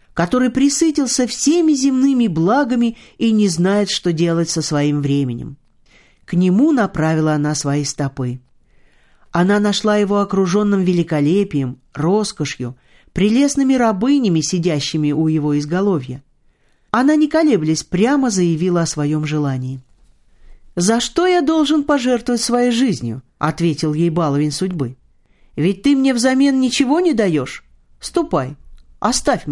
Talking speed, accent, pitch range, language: 120 wpm, native, 150-245 Hz, Russian